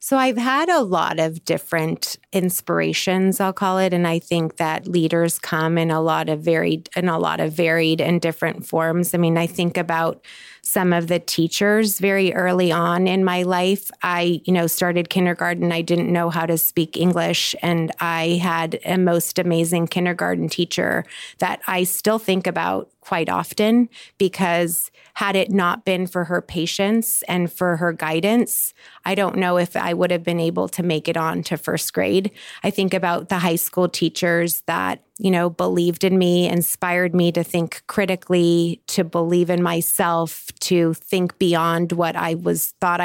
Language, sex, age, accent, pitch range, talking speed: English, female, 30-49, American, 165-190 Hz, 180 wpm